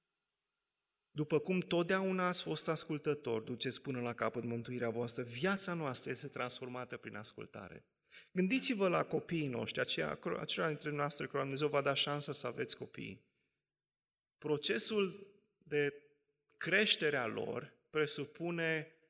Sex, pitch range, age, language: male, 135-175 Hz, 30-49, Romanian